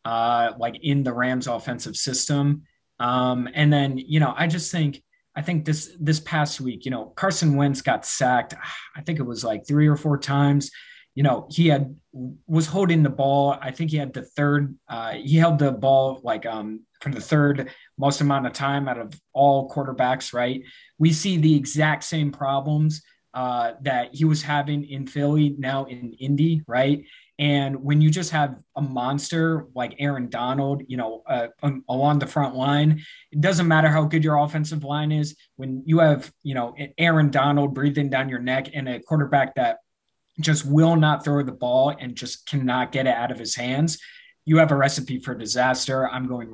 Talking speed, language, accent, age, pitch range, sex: 195 wpm, English, American, 20-39, 130-155 Hz, male